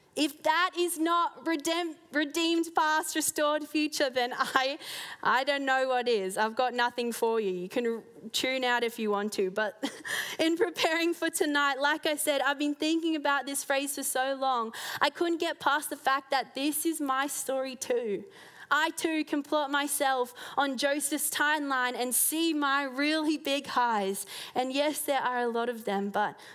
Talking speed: 185 wpm